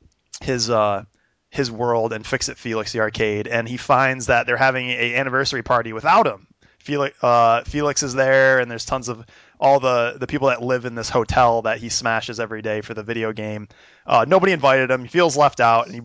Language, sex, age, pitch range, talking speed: English, male, 20-39, 110-130 Hz, 215 wpm